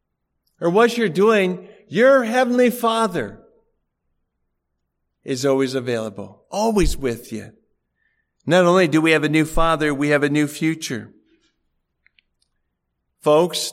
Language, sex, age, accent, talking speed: English, male, 50-69, American, 120 wpm